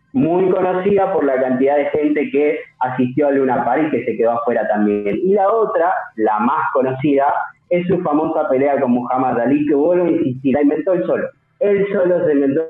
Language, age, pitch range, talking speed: Spanish, 20-39, 135-180 Hz, 200 wpm